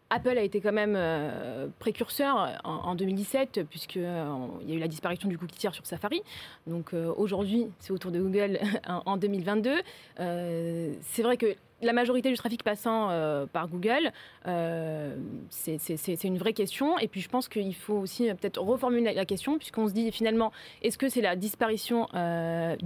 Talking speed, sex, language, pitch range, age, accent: 190 wpm, female, French, 180-230 Hz, 20-39, French